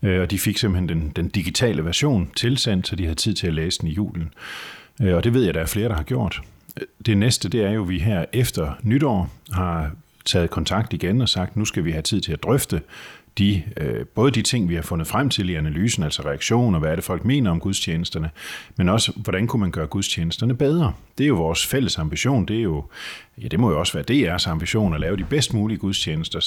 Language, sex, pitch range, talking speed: Danish, male, 85-105 Hz, 240 wpm